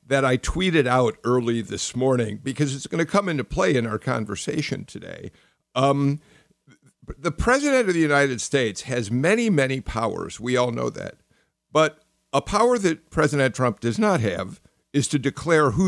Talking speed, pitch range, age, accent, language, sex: 175 wpm, 115-150 Hz, 50-69, American, English, male